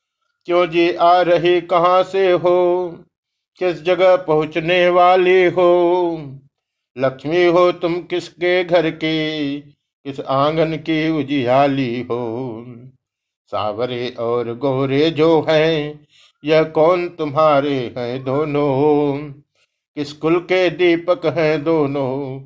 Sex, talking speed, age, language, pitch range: male, 105 wpm, 50-69, Hindi, 135-175 Hz